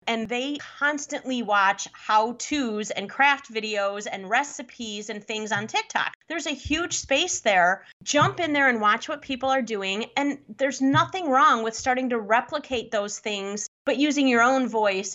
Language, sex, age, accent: English, female, 30-49, American